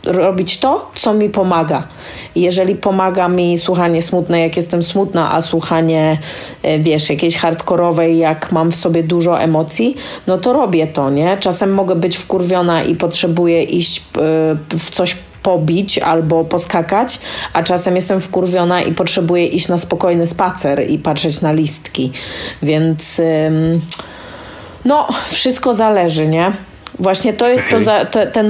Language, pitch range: Polish, 165-185 Hz